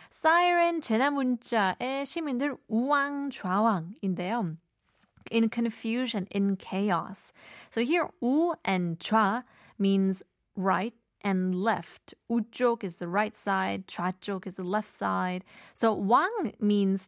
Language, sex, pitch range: Korean, female, 190-245 Hz